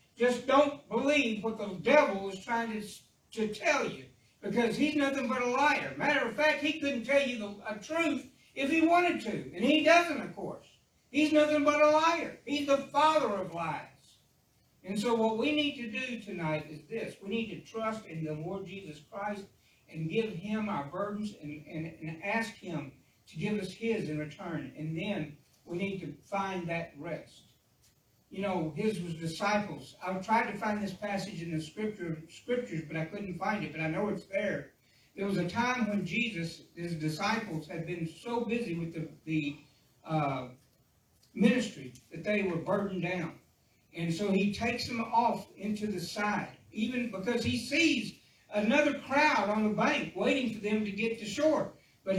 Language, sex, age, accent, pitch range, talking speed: English, male, 60-79, American, 170-240 Hz, 185 wpm